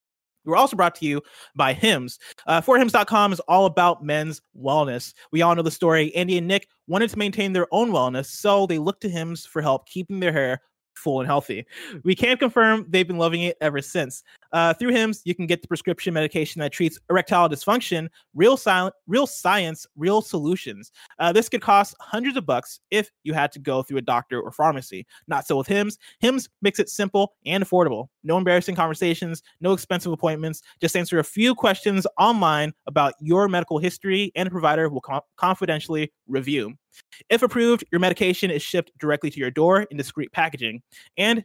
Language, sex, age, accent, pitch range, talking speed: English, male, 20-39, American, 155-205 Hz, 190 wpm